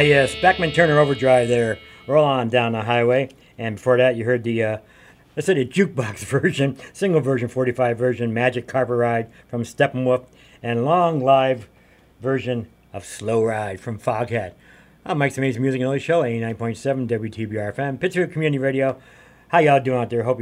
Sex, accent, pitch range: male, American, 115-140 Hz